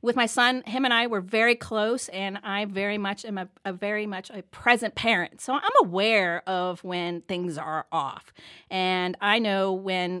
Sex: female